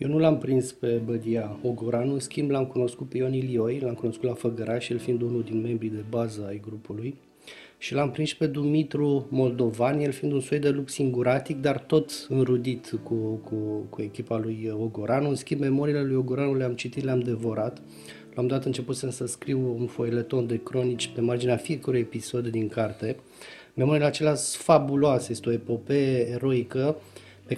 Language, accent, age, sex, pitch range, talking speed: Romanian, native, 30-49, male, 115-135 Hz, 180 wpm